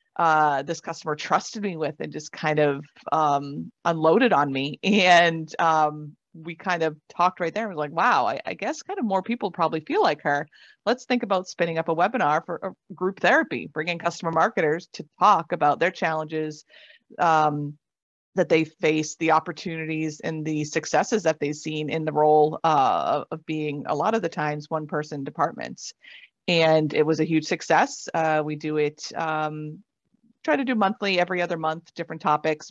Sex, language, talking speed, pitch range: female, English, 190 wpm, 155-190 Hz